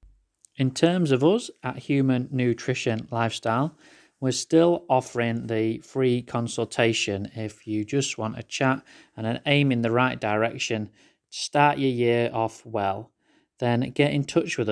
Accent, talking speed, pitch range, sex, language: British, 150 wpm, 110-140 Hz, male, English